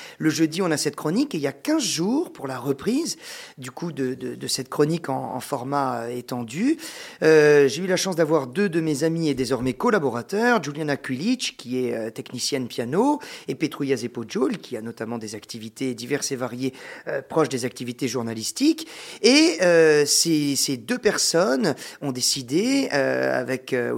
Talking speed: 185 wpm